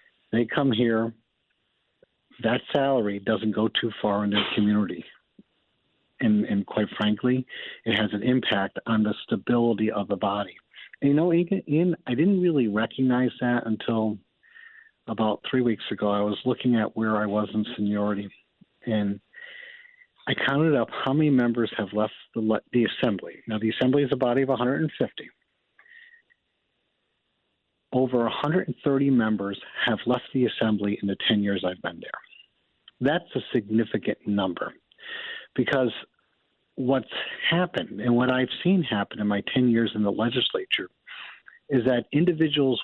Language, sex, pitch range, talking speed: English, male, 105-140 Hz, 145 wpm